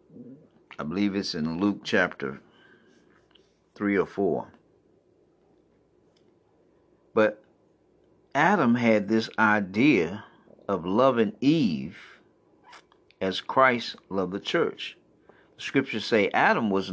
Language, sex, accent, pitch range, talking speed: English, male, American, 95-155 Hz, 95 wpm